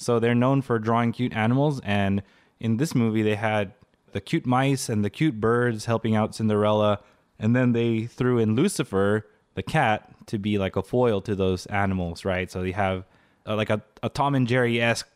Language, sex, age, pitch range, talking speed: English, male, 20-39, 100-130 Hz, 195 wpm